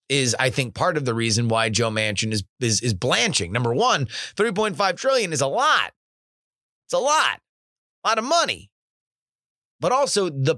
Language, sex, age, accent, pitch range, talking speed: English, male, 30-49, American, 120-180 Hz, 175 wpm